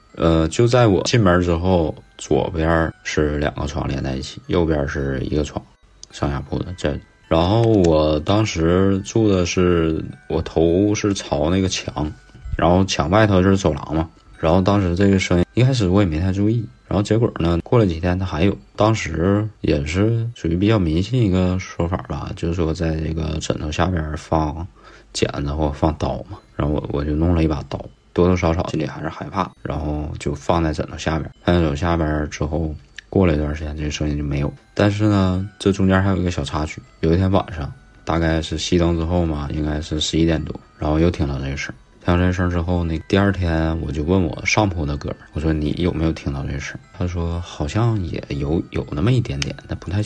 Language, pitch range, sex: Chinese, 75-95 Hz, male